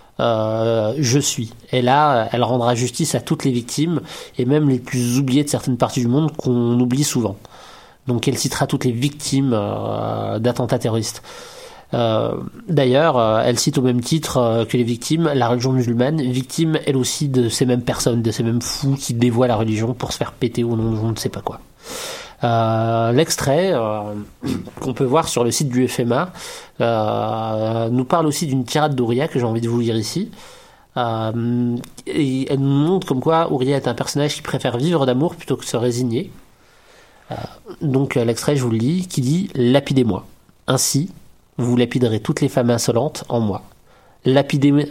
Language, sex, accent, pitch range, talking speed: French, male, French, 120-140 Hz, 185 wpm